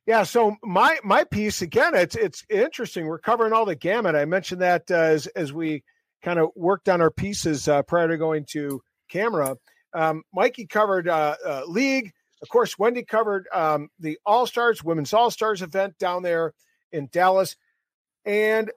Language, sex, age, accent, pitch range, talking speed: English, male, 50-69, American, 160-210 Hz, 180 wpm